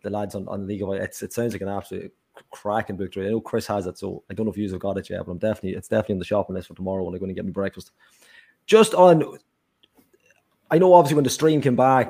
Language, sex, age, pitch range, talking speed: English, male, 30-49, 105-130 Hz, 285 wpm